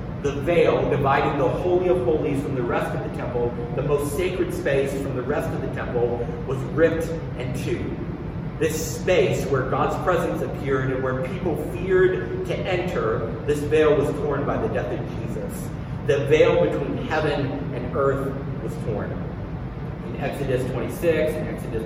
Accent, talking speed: American, 165 wpm